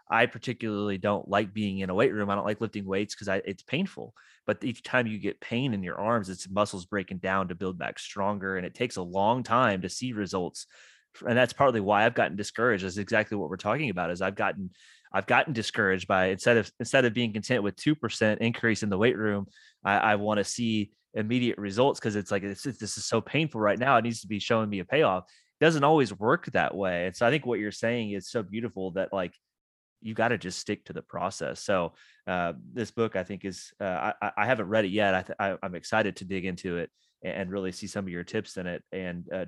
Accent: American